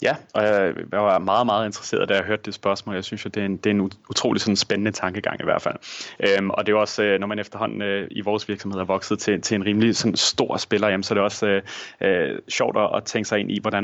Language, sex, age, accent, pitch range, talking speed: Danish, male, 30-49, native, 95-105 Hz, 265 wpm